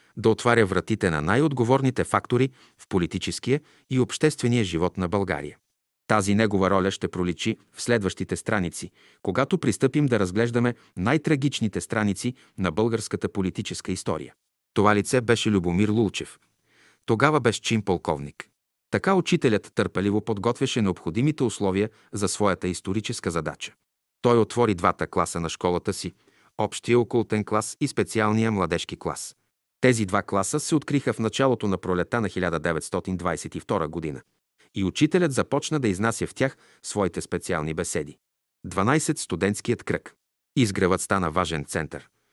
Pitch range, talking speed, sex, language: 90-120 Hz, 130 wpm, male, Bulgarian